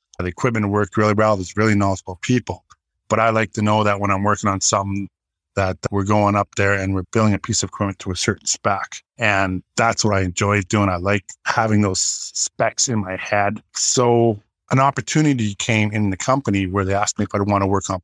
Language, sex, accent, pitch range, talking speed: English, male, American, 95-110 Hz, 225 wpm